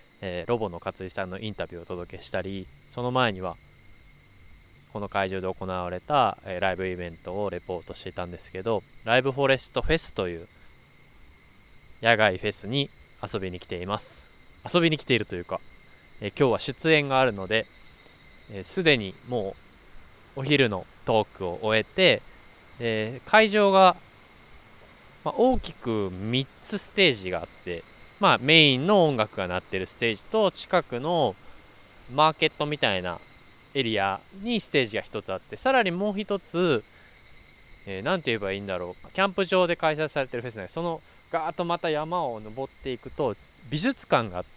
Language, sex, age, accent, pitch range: Japanese, male, 20-39, native, 95-155 Hz